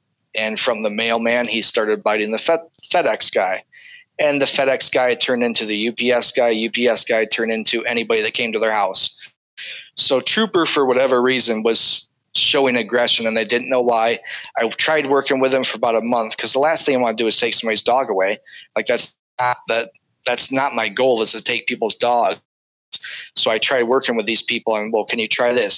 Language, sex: English, male